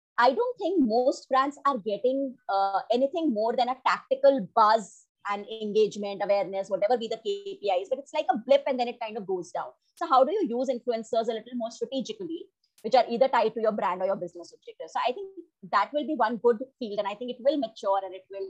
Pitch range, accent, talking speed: 200-270 Hz, Indian, 235 wpm